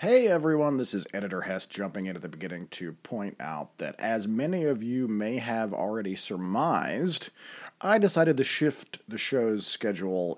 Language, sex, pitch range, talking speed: English, male, 95-150 Hz, 175 wpm